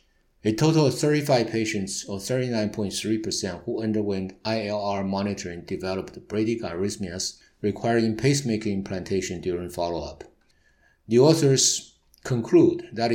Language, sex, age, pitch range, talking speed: English, male, 50-69, 95-115 Hz, 100 wpm